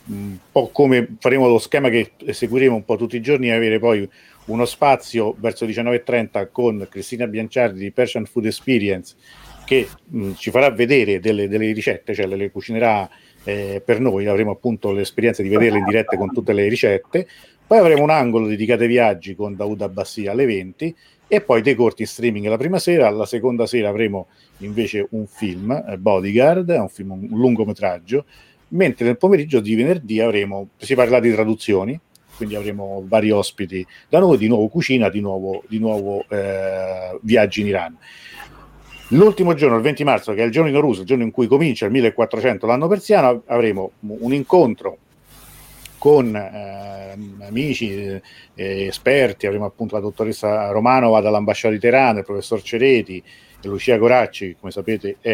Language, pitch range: Italian, 100-120 Hz